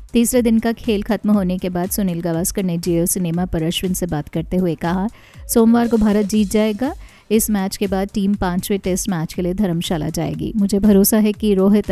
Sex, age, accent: female, 50-69, native